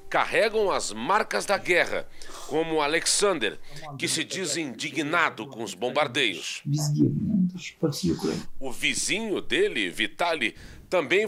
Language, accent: Portuguese, Brazilian